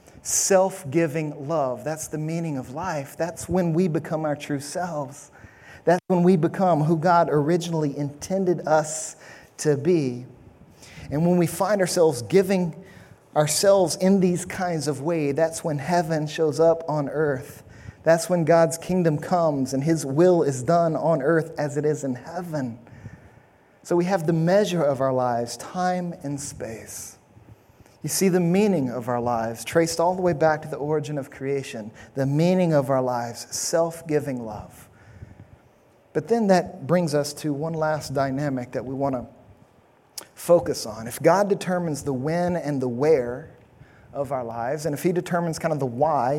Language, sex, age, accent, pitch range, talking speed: English, male, 30-49, American, 140-175 Hz, 170 wpm